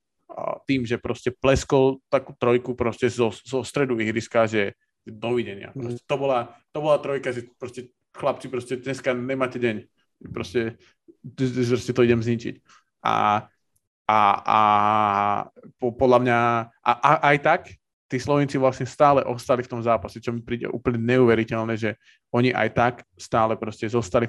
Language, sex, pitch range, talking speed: Slovak, male, 115-130 Hz, 135 wpm